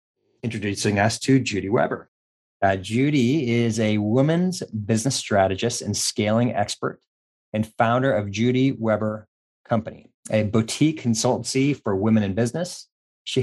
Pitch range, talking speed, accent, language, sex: 105-125 Hz, 130 wpm, American, English, male